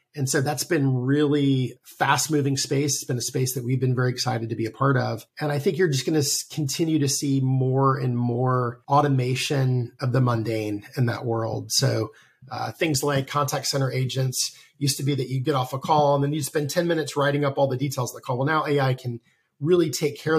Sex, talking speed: male, 235 wpm